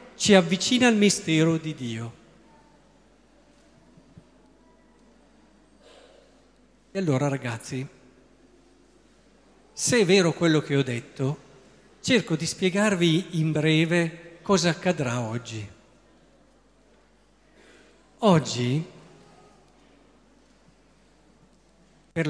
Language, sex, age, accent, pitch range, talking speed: Italian, male, 50-69, native, 130-185 Hz, 70 wpm